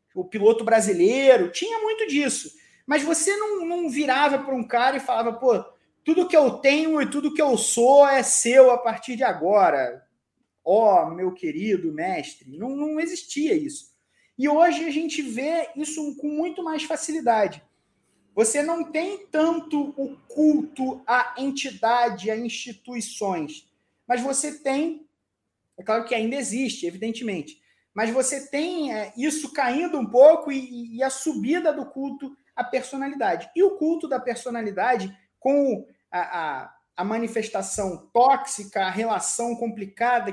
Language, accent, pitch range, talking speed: Portuguese, Brazilian, 220-295 Hz, 140 wpm